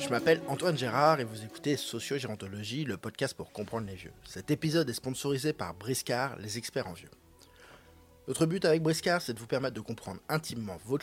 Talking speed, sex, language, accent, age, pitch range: 195 wpm, male, French, French, 20-39, 105-150 Hz